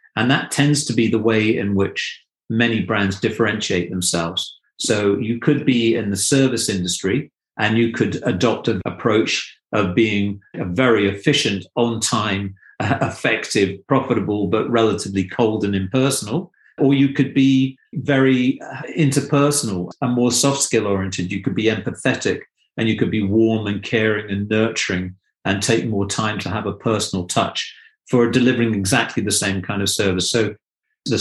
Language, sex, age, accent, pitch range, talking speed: English, male, 40-59, British, 100-125 Hz, 160 wpm